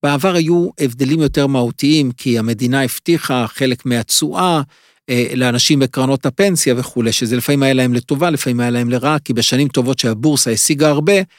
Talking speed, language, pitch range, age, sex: 155 wpm, Hebrew, 130-155 Hz, 50-69, male